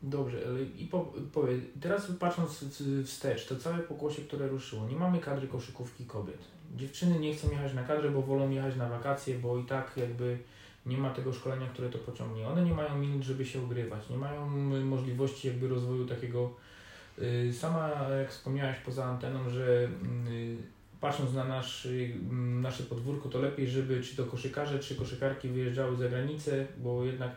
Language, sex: Polish, male